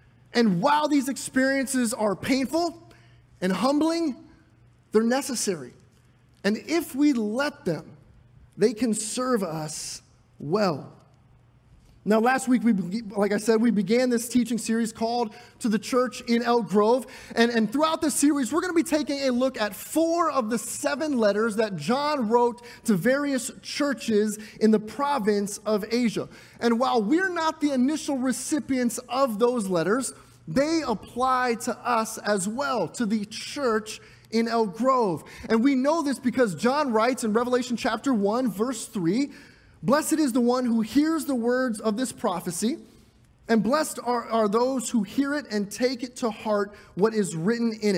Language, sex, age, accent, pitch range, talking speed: English, male, 30-49, American, 210-265 Hz, 165 wpm